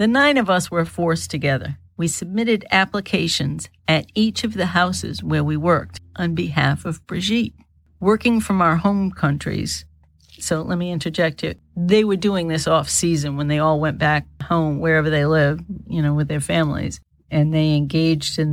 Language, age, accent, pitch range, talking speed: English, 50-69, American, 145-175 Hz, 180 wpm